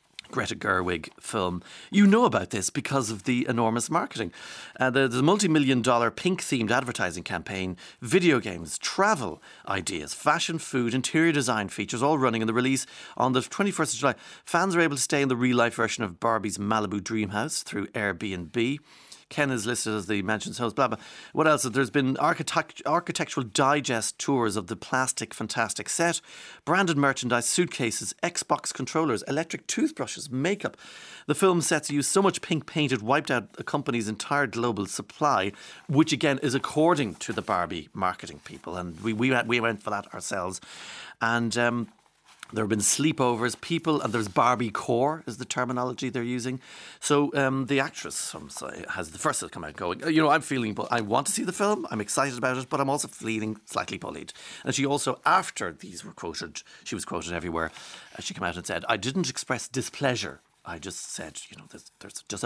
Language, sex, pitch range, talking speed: English, male, 110-145 Hz, 190 wpm